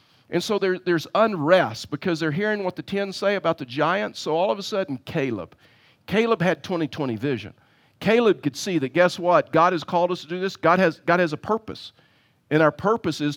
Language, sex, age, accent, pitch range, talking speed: English, male, 50-69, American, 145-180 Hz, 215 wpm